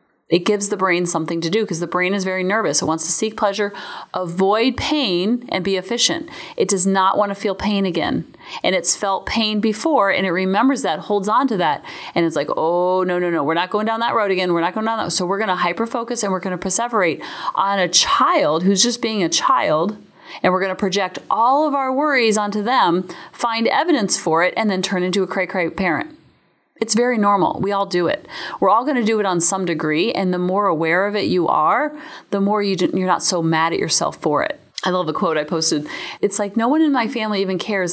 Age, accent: 30-49, American